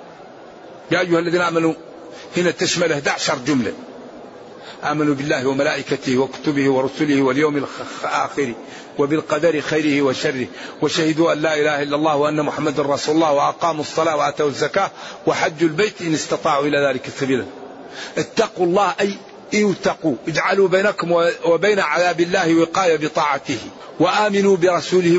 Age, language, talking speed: 50-69, Arabic, 125 wpm